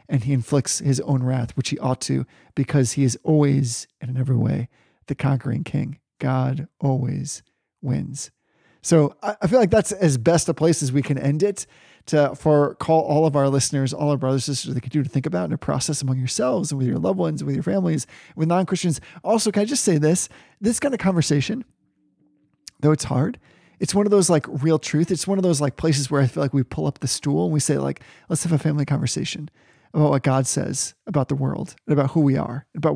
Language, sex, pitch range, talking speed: English, male, 135-165 Hz, 230 wpm